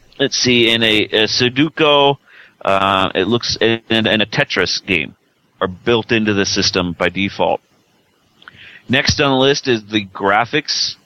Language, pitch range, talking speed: English, 105-130 Hz, 155 wpm